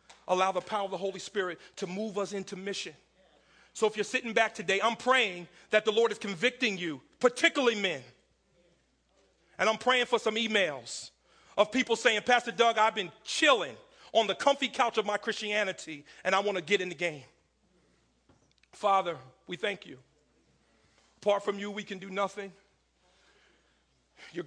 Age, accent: 40-59, American